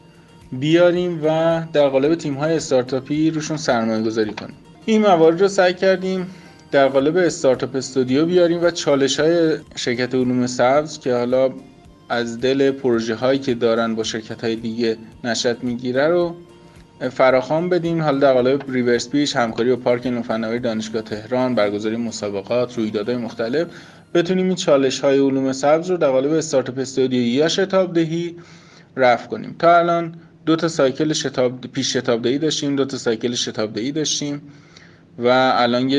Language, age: Persian, 20-39